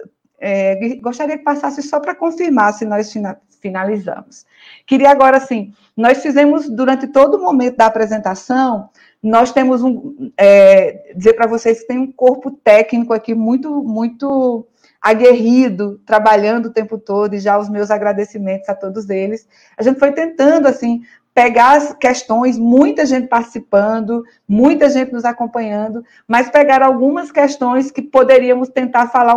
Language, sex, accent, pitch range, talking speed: Portuguese, female, Brazilian, 220-270 Hz, 145 wpm